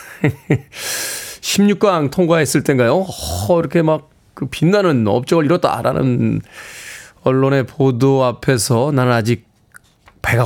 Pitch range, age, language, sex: 120-165 Hz, 20-39, Korean, male